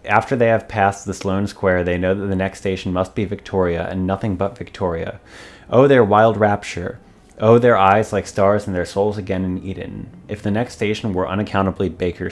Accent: American